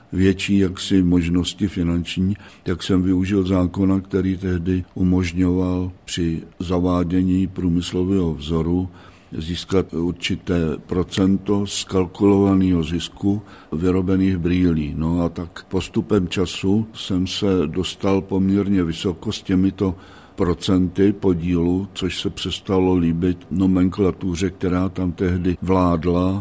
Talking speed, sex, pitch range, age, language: 105 wpm, male, 90-95 Hz, 60-79, Czech